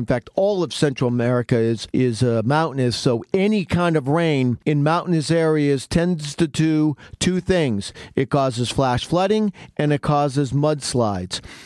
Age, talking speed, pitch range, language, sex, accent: 50-69, 160 wpm, 135-165 Hz, English, male, American